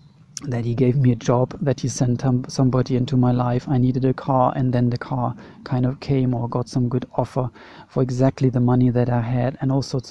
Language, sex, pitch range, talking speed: English, male, 125-145 Hz, 230 wpm